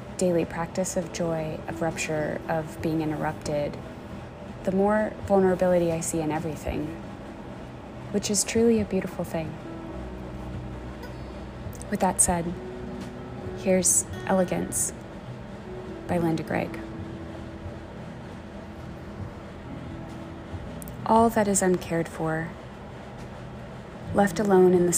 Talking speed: 95 wpm